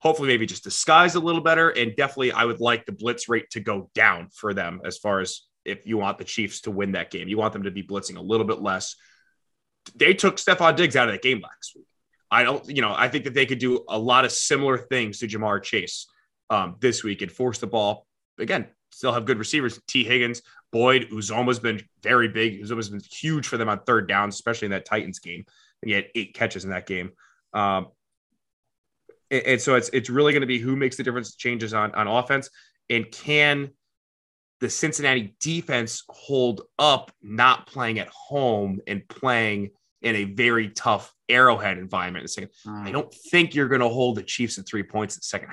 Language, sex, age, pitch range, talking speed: English, male, 20-39, 105-135 Hz, 215 wpm